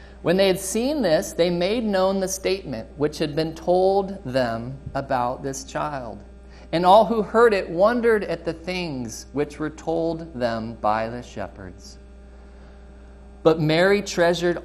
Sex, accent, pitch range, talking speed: male, American, 105-175 Hz, 150 wpm